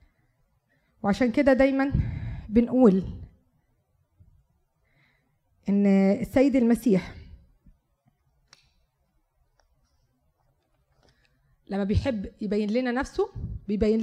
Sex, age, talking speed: female, 20-39, 55 wpm